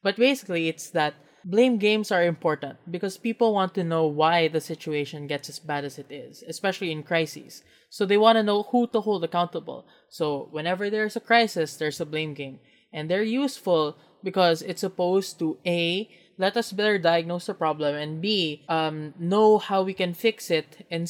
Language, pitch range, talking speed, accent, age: English, 160-205 Hz, 190 wpm, Filipino, 20-39